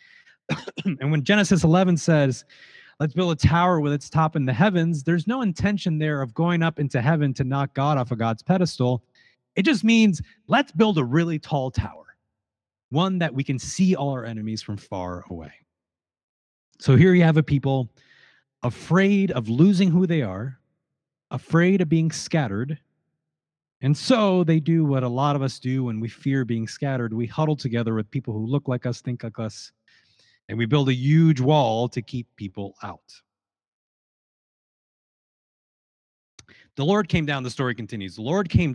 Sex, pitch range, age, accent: male, 110-160 Hz, 30-49, American